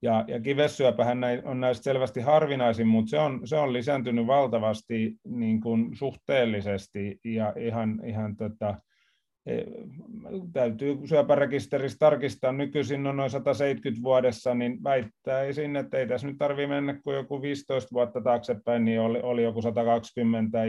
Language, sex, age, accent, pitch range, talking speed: Finnish, male, 30-49, native, 115-140 Hz, 135 wpm